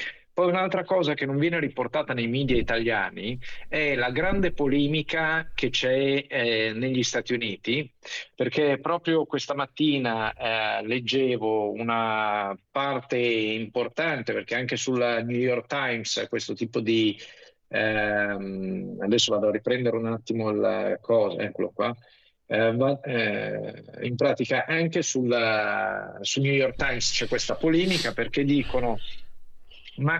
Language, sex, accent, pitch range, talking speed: Italian, male, native, 115-155 Hz, 125 wpm